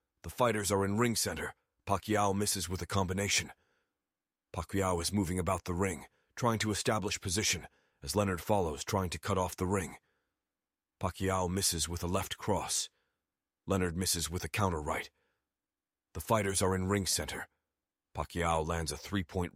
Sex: male